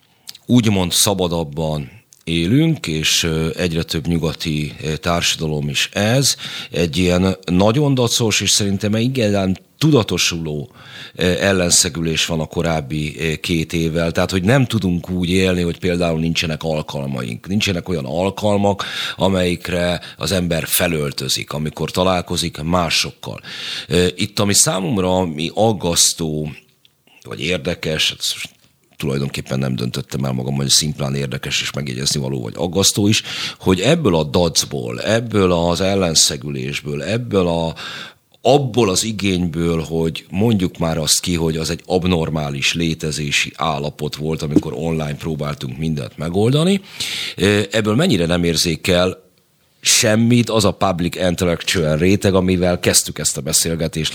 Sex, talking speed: male, 120 wpm